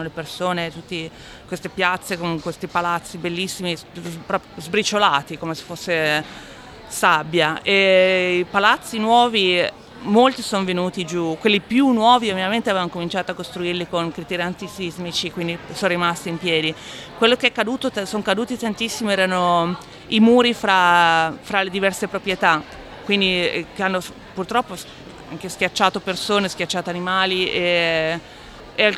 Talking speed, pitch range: 130 wpm, 175-210 Hz